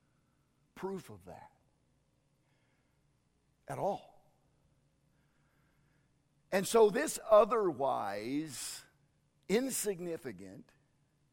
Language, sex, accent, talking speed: English, male, American, 55 wpm